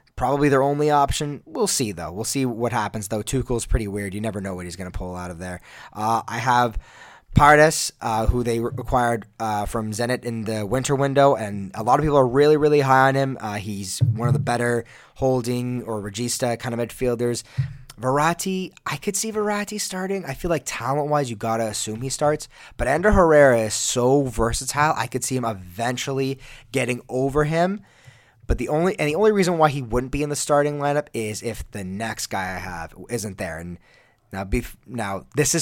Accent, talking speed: American, 210 wpm